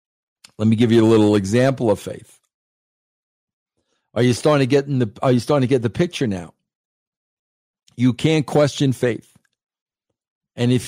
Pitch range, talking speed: 120-150 Hz, 165 wpm